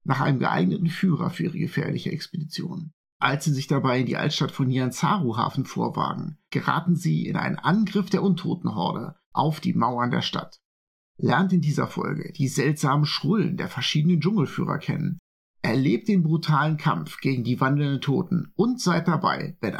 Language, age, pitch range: German, 50-69, 145-195 Hz